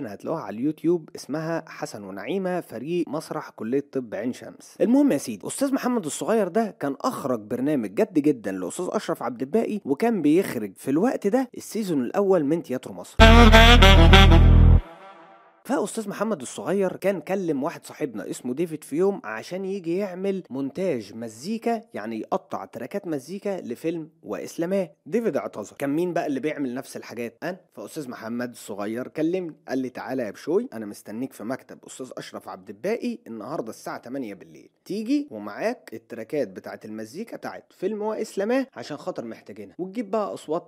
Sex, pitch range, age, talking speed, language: male, 125-205 Hz, 30-49, 155 wpm, Arabic